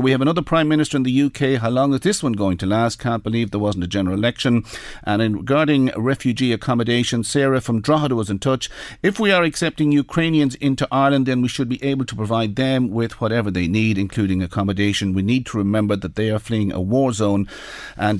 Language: English